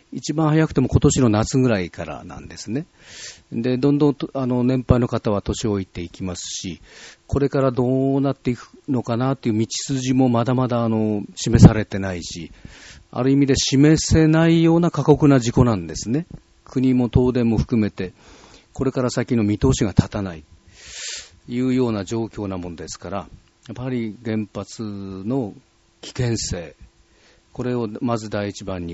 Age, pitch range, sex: 40-59, 100-125 Hz, male